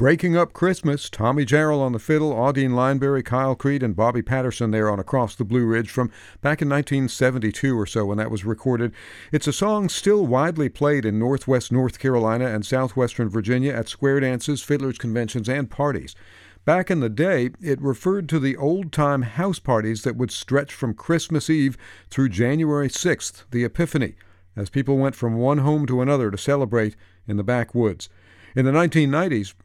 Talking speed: 180 wpm